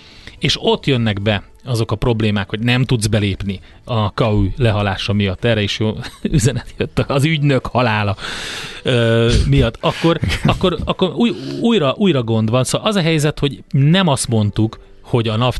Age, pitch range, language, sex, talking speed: 30-49, 105-140 Hz, Hungarian, male, 165 wpm